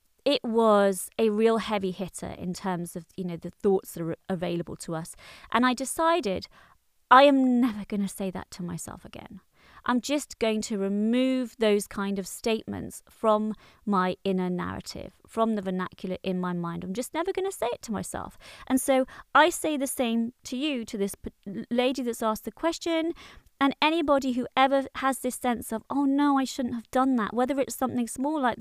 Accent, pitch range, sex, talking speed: British, 205-275 Hz, female, 195 wpm